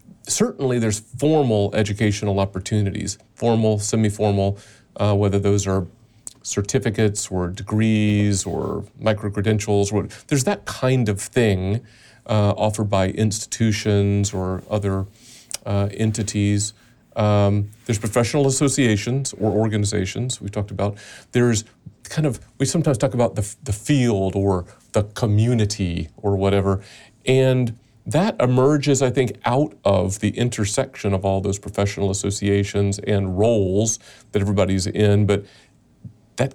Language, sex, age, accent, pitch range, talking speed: English, male, 40-59, American, 100-120 Hz, 115 wpm